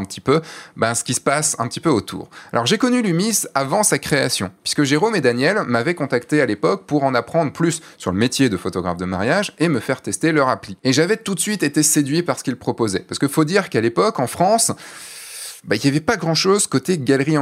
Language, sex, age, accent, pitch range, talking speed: French, male, 20-39, French, 110-160 Hz, 245 wpm